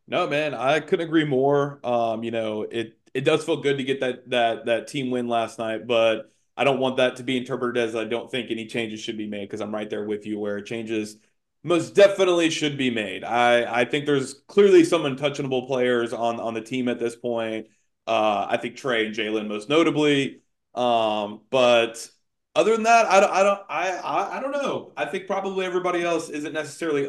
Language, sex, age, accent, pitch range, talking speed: English, male, 20-39, American, 115-155 Hz, 215 wpm